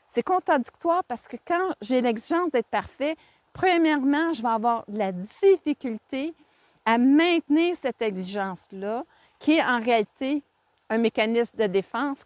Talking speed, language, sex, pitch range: 130 wpm, French, female, 225-315 Hz